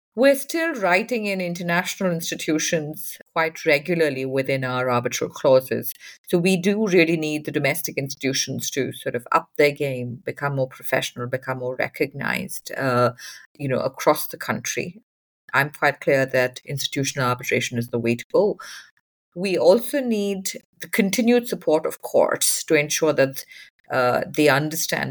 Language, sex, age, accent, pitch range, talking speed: English, female, 50-69, Indian, 130-170 Hz, 150 wpm